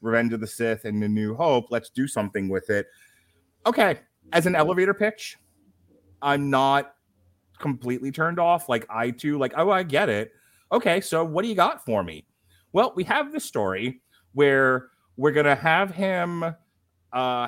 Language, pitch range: English, 105-140 Hz